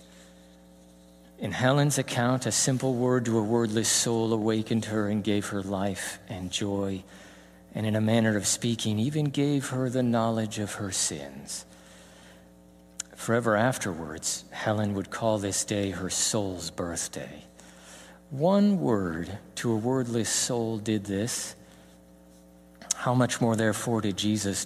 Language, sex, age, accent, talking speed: English, male, 50-69, American, 135 wpm